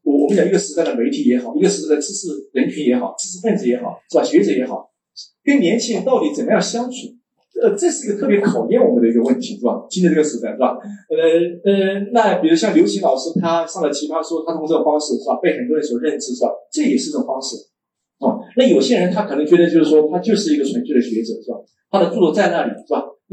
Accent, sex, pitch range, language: native, male, 155-235 Hz, Chinese